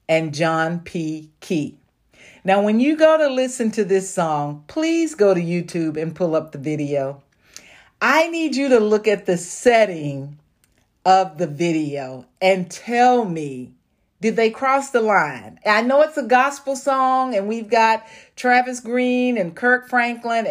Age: 40-59